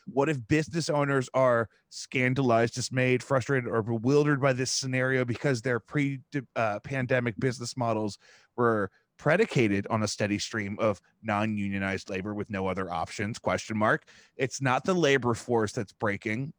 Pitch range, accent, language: 115-150 Hz, American, English